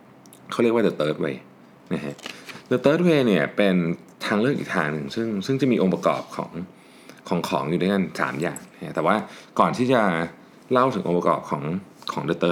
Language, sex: Thai, male